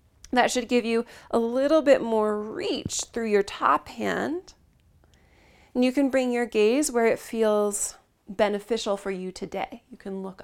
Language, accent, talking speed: English, American, 165 wpm